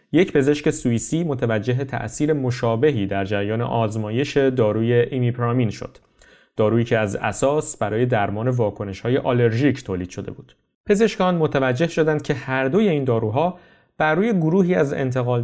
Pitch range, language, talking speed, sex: 110-145 Hz, Persian, 140 wpm, male